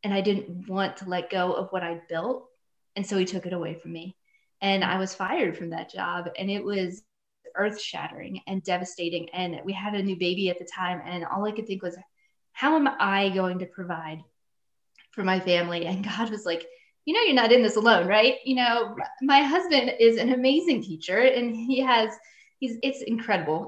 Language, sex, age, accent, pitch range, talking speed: English, female, 20-39, American, 180-230 Hz, 210 wpm